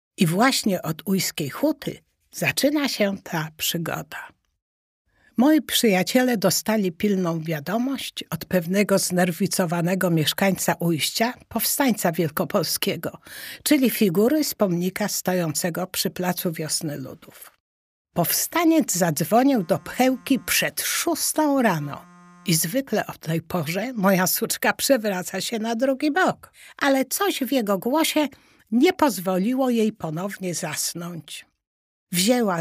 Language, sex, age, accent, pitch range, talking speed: Polish, female, 60-79, native, 175-250 Hz, 110 wpm